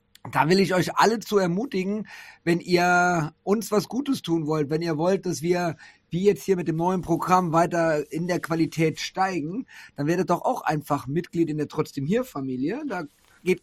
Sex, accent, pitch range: male, German, 145-185 Hz